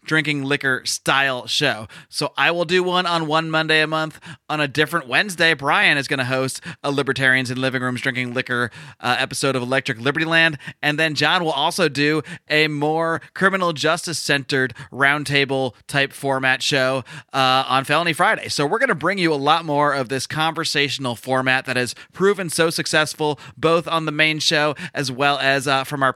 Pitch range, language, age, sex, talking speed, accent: 130-160 Hz, English, 30-49, male, 195 wpm, American